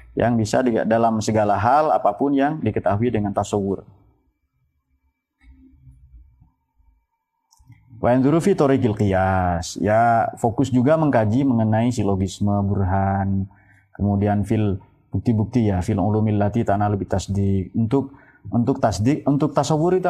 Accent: native